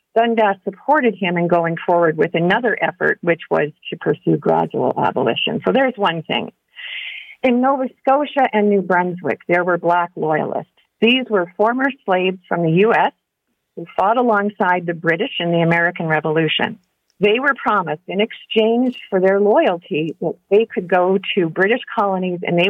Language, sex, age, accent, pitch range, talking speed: English, female, 50-69, American, 175-225 Hz, 165 wpm